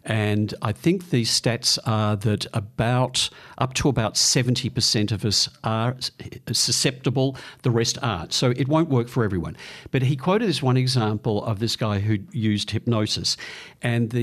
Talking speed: 160 wpm